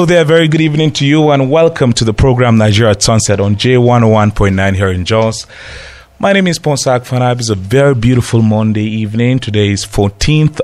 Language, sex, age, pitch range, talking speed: English, male, 30-49, 90-120 Hz, 190 wpm